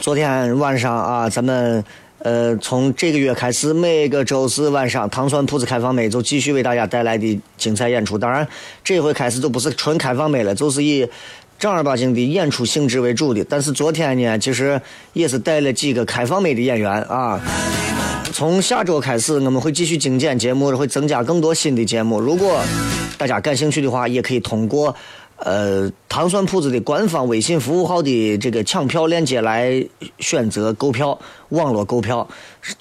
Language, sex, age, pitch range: Chinese, male, 30-49, 120-150 Hz